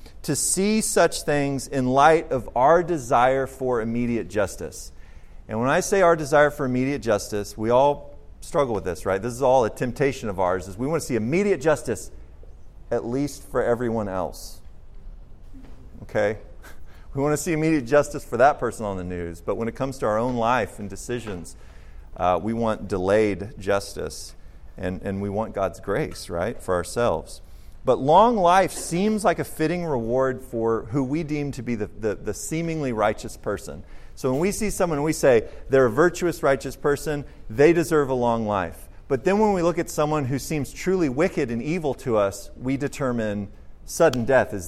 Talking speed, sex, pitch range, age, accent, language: 190 wpm, male, 100-145 Hz, 40-59, American, English